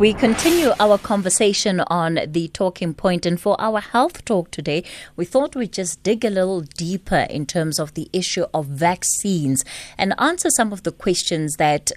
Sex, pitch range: female, 150-195 Hz